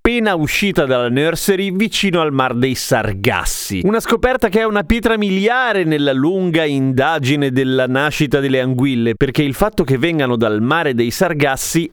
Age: 30-49